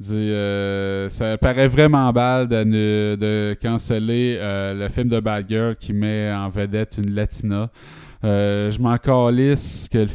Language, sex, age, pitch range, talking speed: French, male, 20-39, 100-120 Hz, 160 wpm